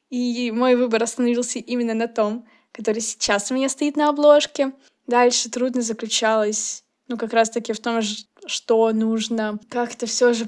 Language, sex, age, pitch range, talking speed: Russian, female, 10-29, 225-275 Hz, 160 wpm